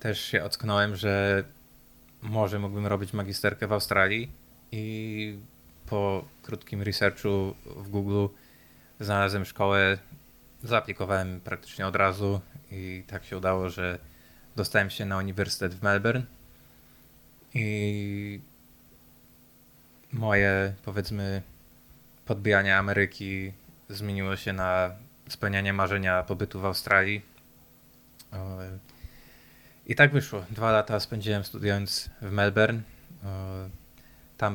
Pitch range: 95-105 Hz